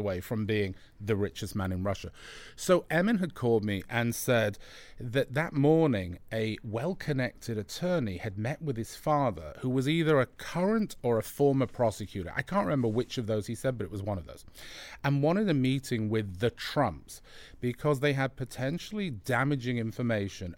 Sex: male